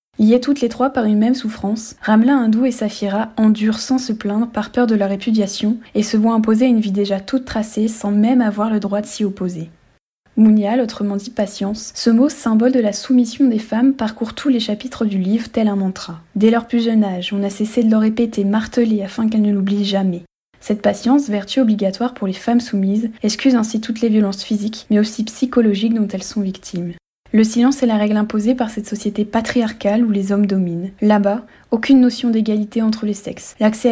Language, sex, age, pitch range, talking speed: French, female, 10-29, 205-235 Hz, 210 wpm